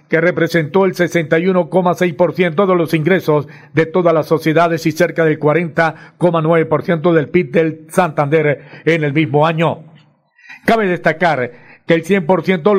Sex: male